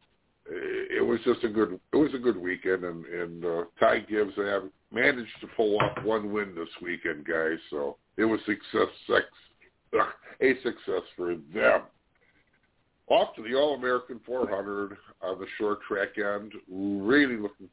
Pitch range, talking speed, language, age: 100-140 Hz, 165 wpm, English, 50-69